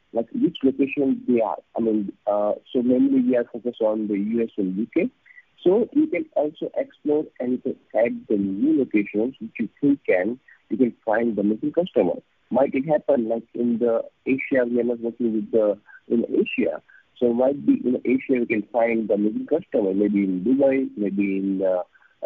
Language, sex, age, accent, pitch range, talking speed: English, male, 50-69, Indian, 110-145 Hz, 195 wpm